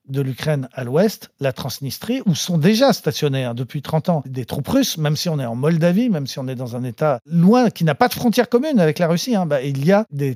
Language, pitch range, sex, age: French, 145-210 Hz, male, 50-69